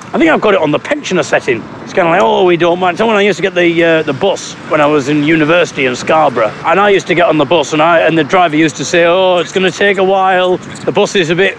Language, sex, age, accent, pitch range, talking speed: English, male, 40-59, British, 145-180 Hz, 320 wpm